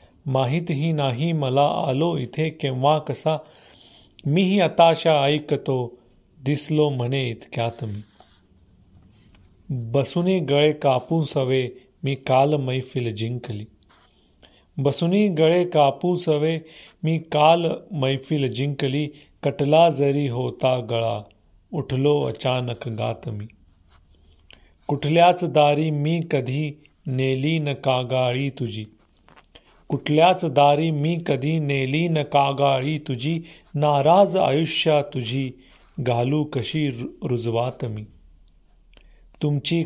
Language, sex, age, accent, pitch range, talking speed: Marathi, male, 40-59, native, 120-150 Hz, 95 wpm